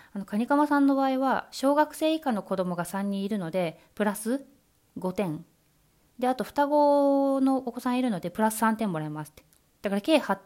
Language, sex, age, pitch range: Japanese, female, 20-39, 175-245 Hz